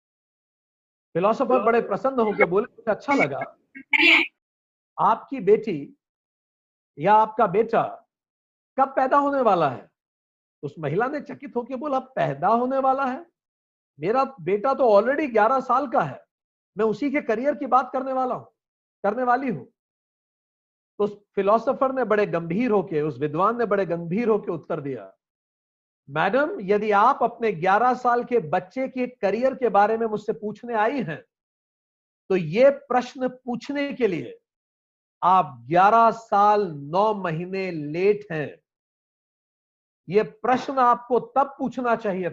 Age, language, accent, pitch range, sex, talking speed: 50-69, Hindi, native, 195-260 Hz, male, 145 wpm